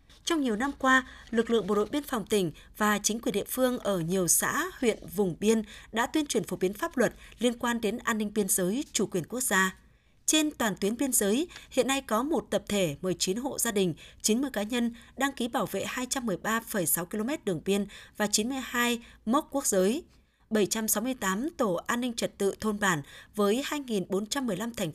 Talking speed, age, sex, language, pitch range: 200 wpm, 20-39, female, Vietnamese, 190-245 Hz